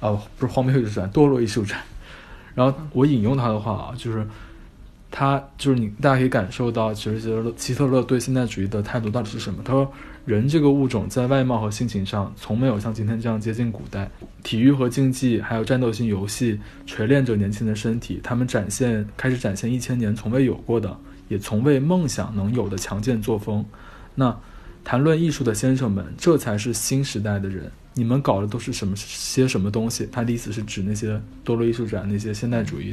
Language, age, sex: Chinese, 20-39, male